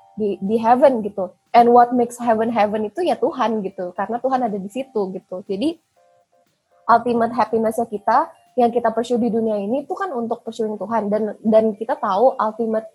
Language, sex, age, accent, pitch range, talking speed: Indonesian, female, 20-39, native, 200-235 Hz, 180 wpm